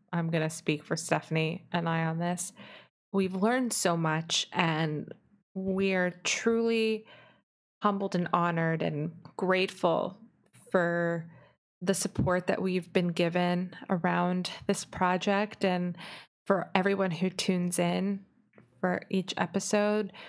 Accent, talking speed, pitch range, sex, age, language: American, 125 wpm, 175-200 Hz, female, 20-39, English